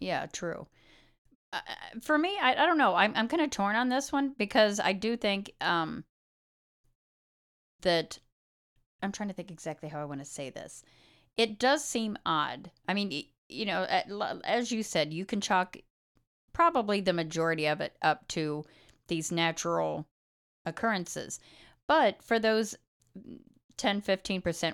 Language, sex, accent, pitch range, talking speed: English, female, American, 160-220 Hz, 155 wpm